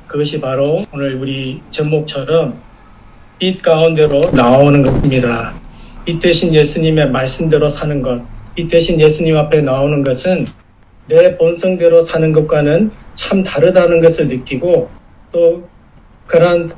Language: Korean